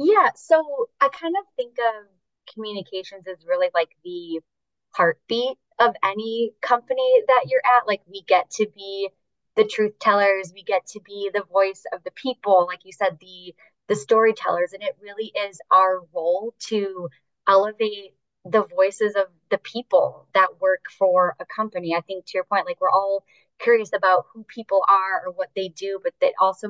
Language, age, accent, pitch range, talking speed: English, 20-39, American, 180-235 Hz, 180 wpm